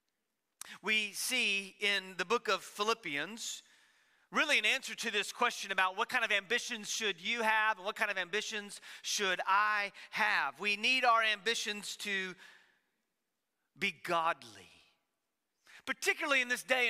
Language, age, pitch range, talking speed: English, 40-59, 190-245 Hz, 140 wpm